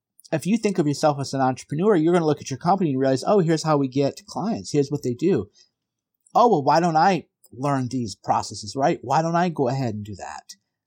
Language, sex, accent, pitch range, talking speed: English, male, American, 120-155 Hz, 245 wpm